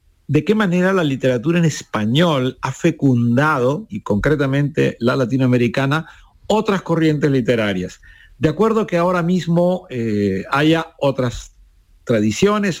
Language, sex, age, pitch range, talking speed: Spanish, male, 50-69, 120-160 Hz, 115 wpm